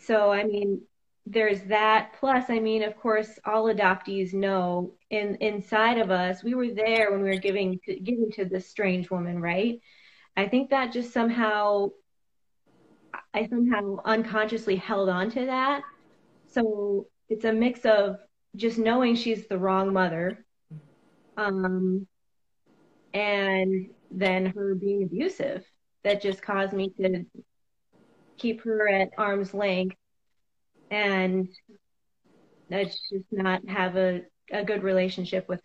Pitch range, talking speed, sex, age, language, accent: 190-220 Hz, 135 wpm, female, 20-39, English, American